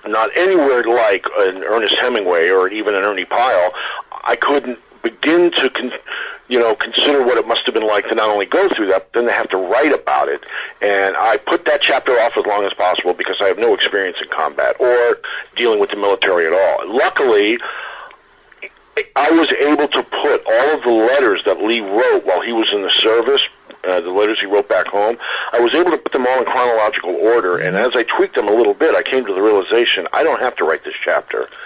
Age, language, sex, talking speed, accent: 40-59, English, male, 225 wpm, American